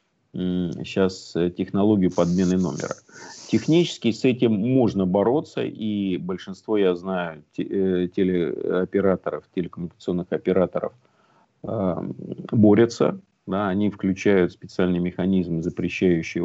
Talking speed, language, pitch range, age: 95 wpm, Russian, 90-110 Hz, 50-69